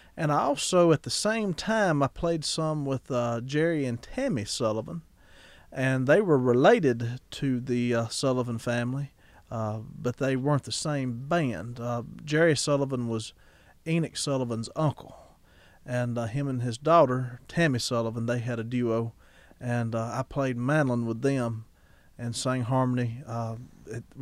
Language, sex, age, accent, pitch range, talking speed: English, male, 40-59, American, 115-140 Hz, 155 wpm